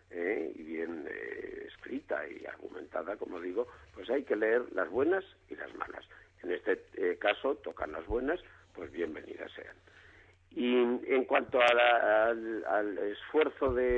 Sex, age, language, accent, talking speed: male, 50-69, Spanish, Spanish, 160 wpm